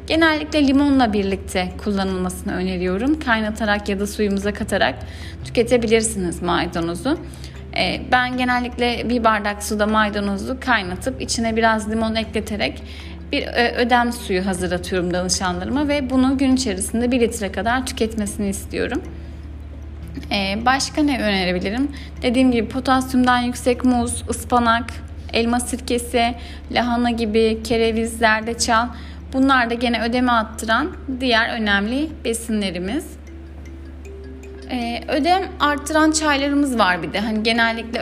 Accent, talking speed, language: native, 110 wpm, Turkish